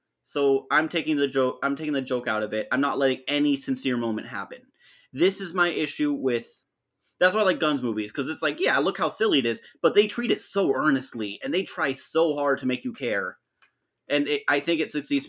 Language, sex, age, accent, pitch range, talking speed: English, male, 30-49, American, 130-210 Hz, 235 wpm